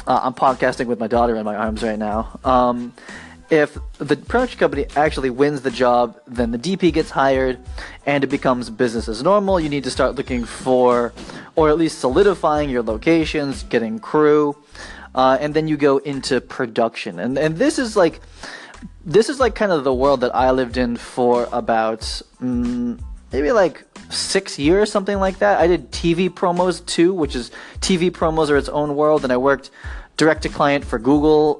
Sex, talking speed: male, 190 wpm